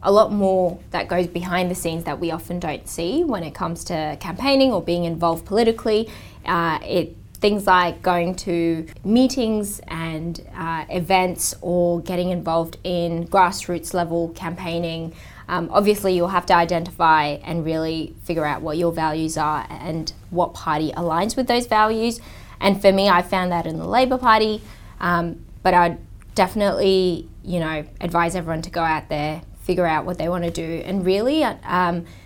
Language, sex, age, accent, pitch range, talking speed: English, female, 20-39, Australian, 165-190 Hz, 170 wpm